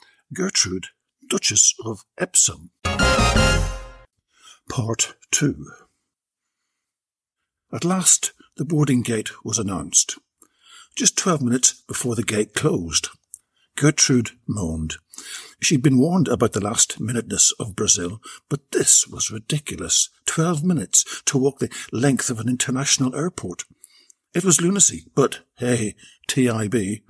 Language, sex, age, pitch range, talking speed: English, male, 60-79, 110-150 Hz, 110 wpm